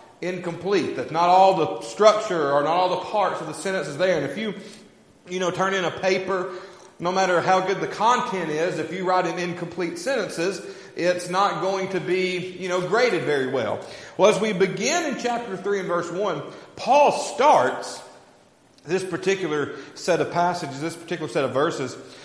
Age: 40-59